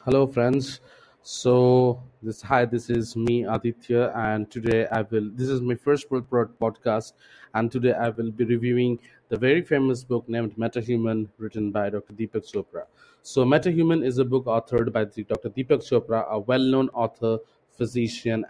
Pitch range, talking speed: 110-130 Hz, 155 wpm